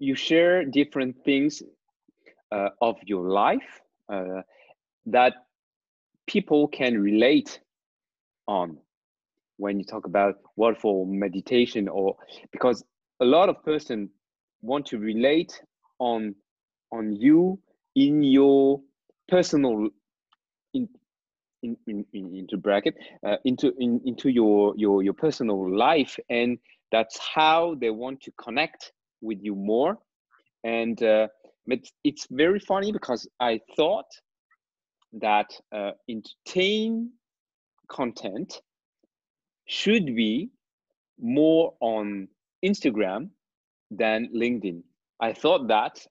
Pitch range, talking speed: 105-155 Hz, 110 wpm